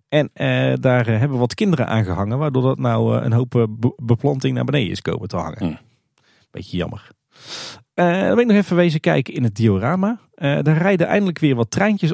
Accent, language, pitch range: Dutch, Dutch, 105-155 Hz